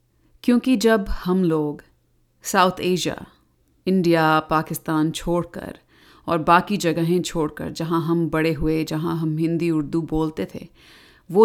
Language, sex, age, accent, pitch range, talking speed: Hindi, female, 30-49, native, 155-205 Hz, 125 wpm